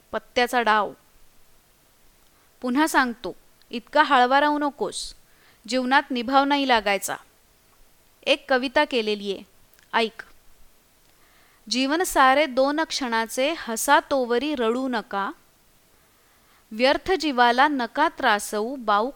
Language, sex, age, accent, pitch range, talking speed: Marathi, female, 20-39, native, 235-300 Hz, 90 wpm